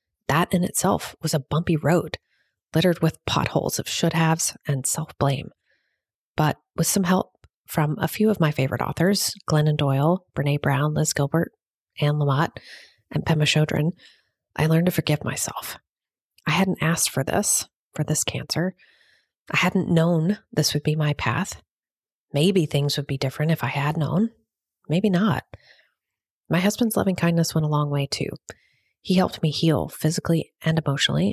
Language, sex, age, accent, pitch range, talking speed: English, female, 30-49, American, 145-170 Hz, 160 wpm